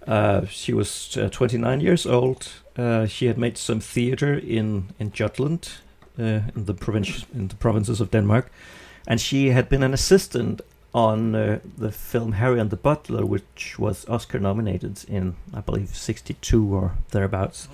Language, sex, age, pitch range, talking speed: English, male, 50-69, 95-125 Hz, 165 wpm